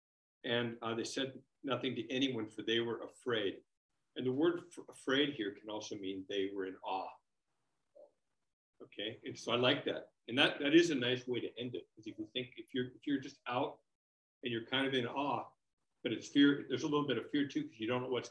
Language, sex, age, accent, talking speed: English, male, 50-69, American, 230 wpm